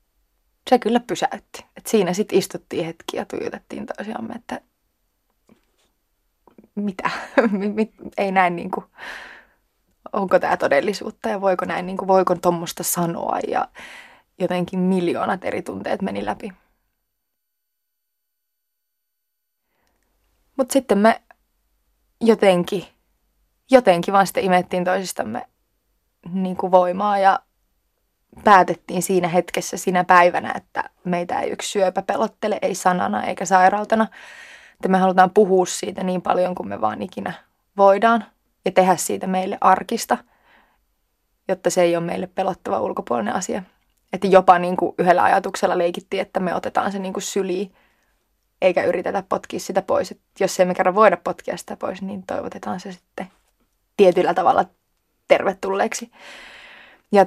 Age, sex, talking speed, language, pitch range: 20-39, female, 125 wpm, Finnish, 180-205 Hz